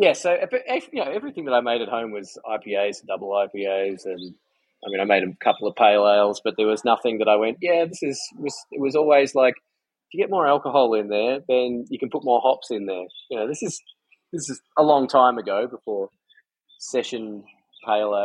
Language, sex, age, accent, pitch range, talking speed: English, male, 20-39, Australian, 105-135 Hz, 220 wpm